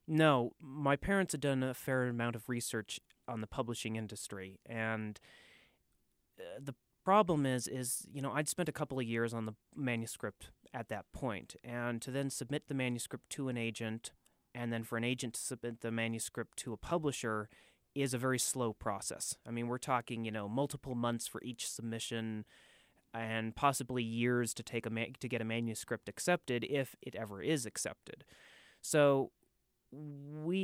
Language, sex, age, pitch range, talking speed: English, male, 30-49, 115-135 Hz, 170 wpm